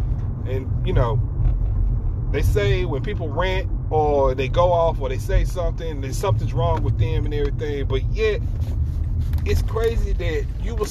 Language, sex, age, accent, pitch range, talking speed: English, male, 30-49, American, 95-110 Hz, 165 wpm